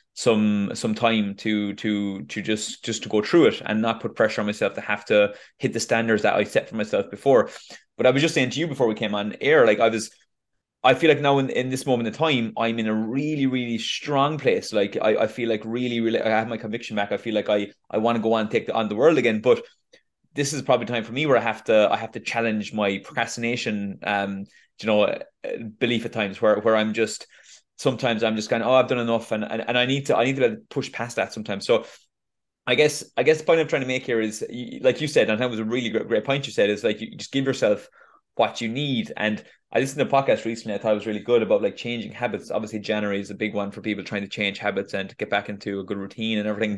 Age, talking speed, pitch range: 20-39, 275 wpm, 105-125 Hz